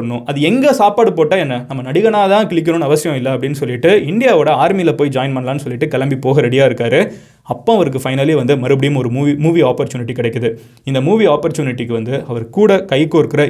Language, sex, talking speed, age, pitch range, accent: Tamil, male, 80 wpm, 20-39, 130-175 Hz, native